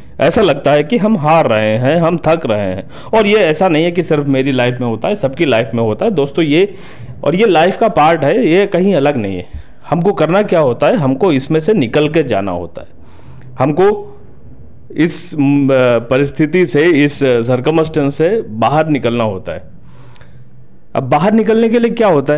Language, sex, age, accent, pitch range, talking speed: Hindi, male, 40-59, native, 120-170 Hz, 195 wpm